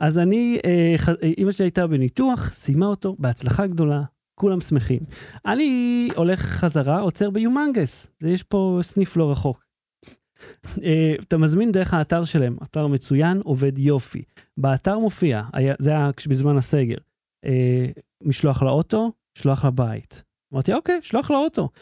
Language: Hebrew